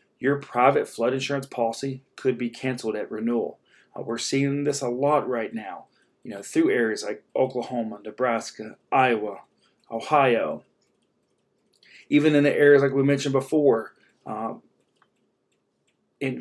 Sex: male